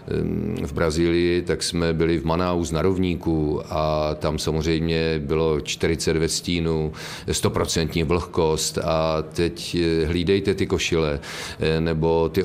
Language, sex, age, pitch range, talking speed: Czech, male, 40-59, 80-95 Hz, 115 wpm